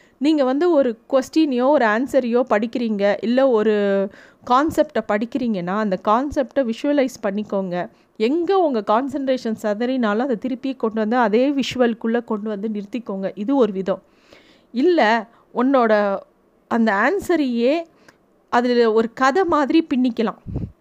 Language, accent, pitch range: Tamil, native, 220-275 Hz